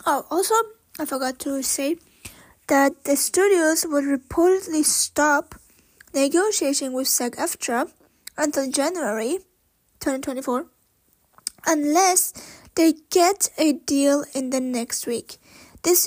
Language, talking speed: English, 105 wpm